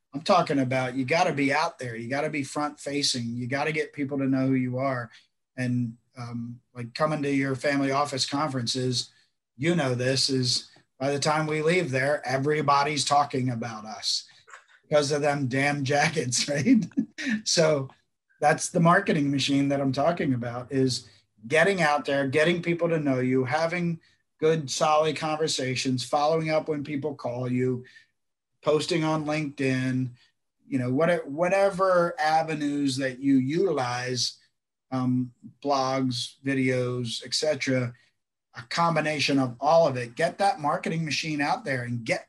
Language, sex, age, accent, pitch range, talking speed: English, male, 40-59, American, 130-155 Hz, 160 wpm